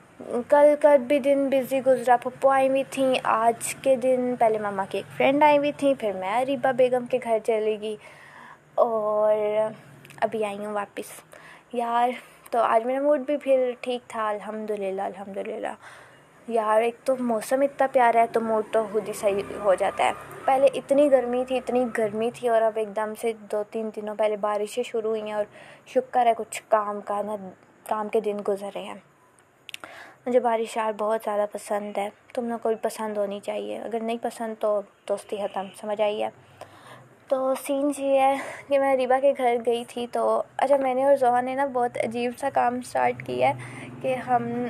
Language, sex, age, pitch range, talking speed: Urdu, female, 20-39, 215-260 Hz, 185 wpm